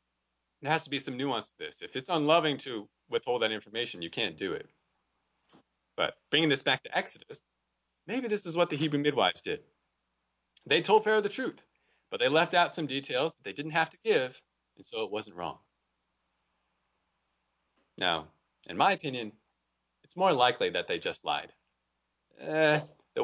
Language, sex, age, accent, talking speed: English, male, 30-49, American, 175 wpm